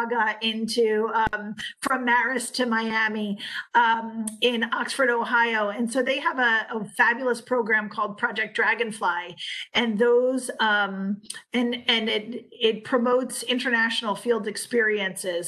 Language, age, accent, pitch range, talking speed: English, 40-59, American, 215-250 Hz, 125 wpm